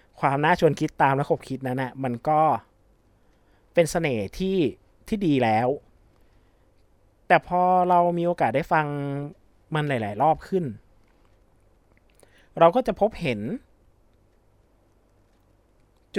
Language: Thai